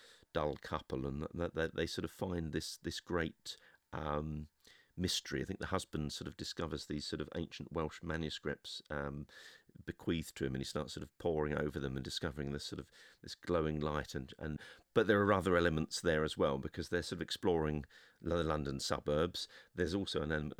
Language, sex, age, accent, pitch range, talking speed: English, male, 40-59, British, 75-90 Hz, 200 wpm